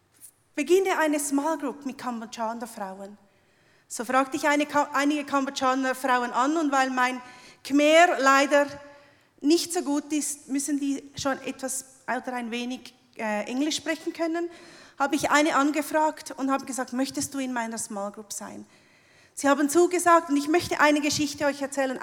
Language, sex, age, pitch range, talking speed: German, female, 40-59, 240-295 Hz, 165 wpm